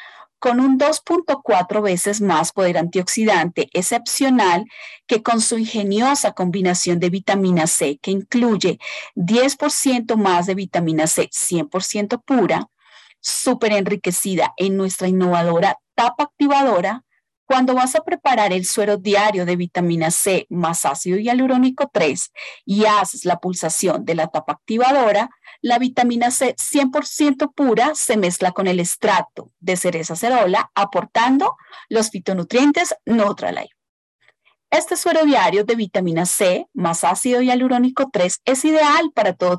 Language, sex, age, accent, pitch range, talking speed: Spanish, female, 30-49, Colombian, 180-260 Hz, 130 wpm